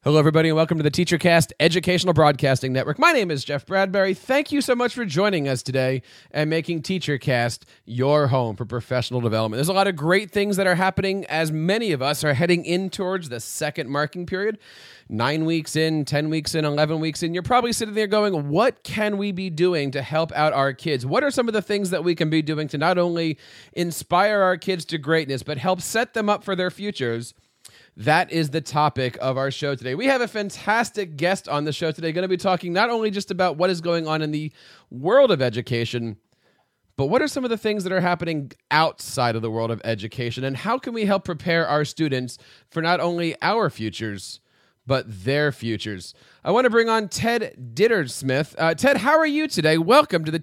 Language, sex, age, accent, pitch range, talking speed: English, male, 30-49, American, 135-190 Hz, 220 wpm